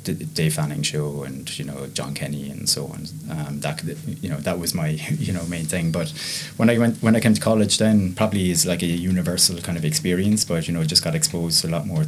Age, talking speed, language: 20-39, 250 wpm, English